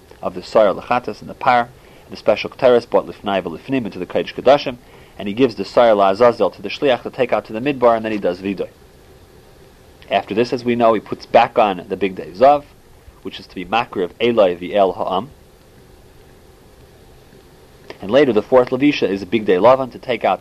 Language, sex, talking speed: English, male, 210 wpm